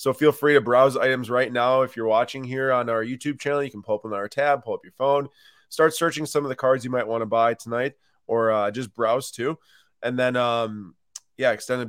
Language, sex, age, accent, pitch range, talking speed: English, male, 20-39, American, 115-145 Hz, 245 wpm